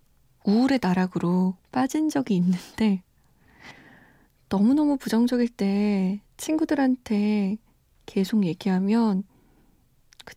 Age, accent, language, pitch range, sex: 20-39, native, Korean, 190-260 Hz, female